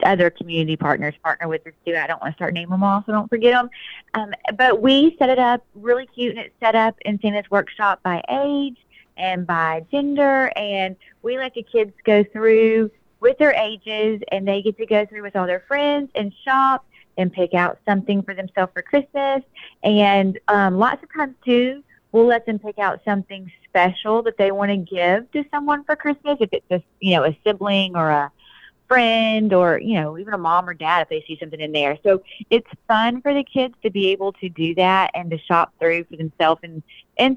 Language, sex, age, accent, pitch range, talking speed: English, female, 30-49, American, 180-235 Hz, 215 wpm